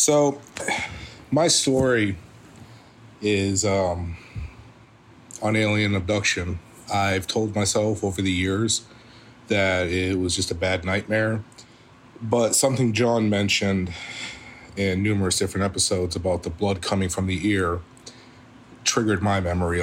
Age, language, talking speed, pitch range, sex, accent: 30-49, English, 120 wpm, 100-120 Hz, male, American